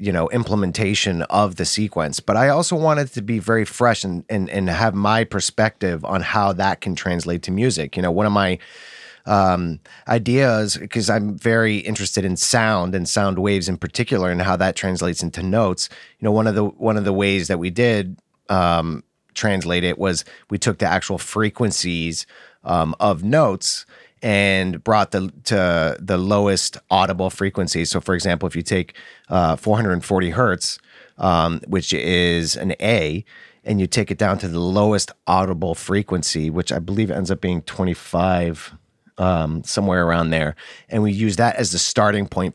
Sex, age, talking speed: male, 30-49, 180 wpm